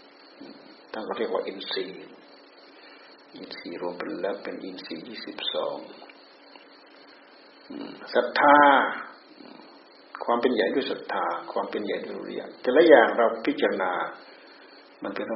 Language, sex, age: Thai, male, 60-79